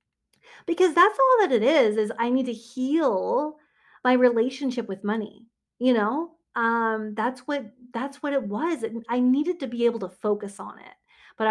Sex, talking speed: female, 180 wpm